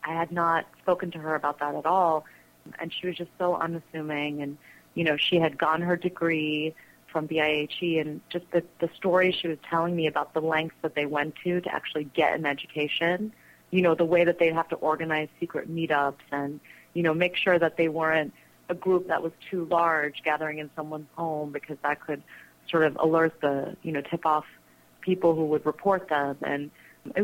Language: English